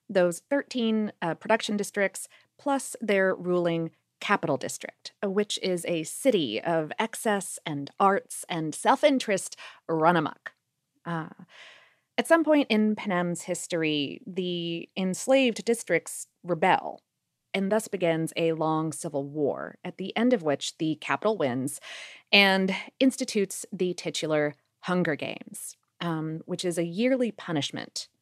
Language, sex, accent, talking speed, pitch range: English, female, American, 130 wpm, 160-215 Hz